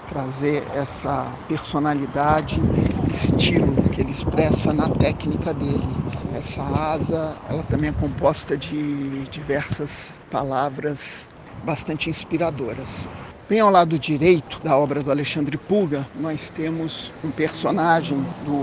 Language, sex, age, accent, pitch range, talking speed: Portuguese, male, 50-69, Brazilian, 140-165 Hz, 115 wpm